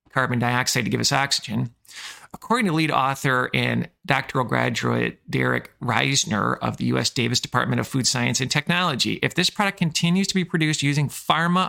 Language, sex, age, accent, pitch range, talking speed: English, male, 40-59, American, 120-150 Hz, 175 wpm